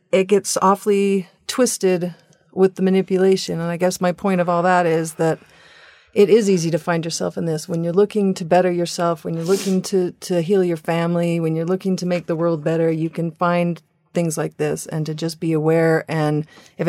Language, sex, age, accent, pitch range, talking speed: English, female, 40-59, American, 165-190 Hz, 215 wpm